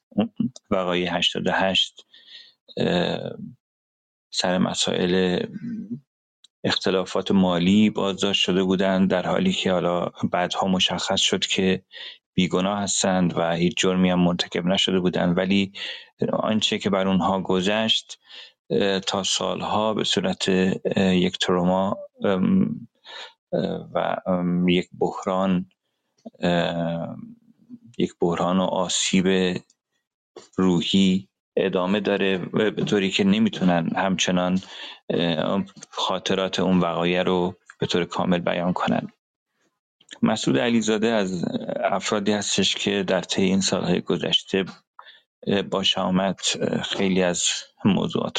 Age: 40-59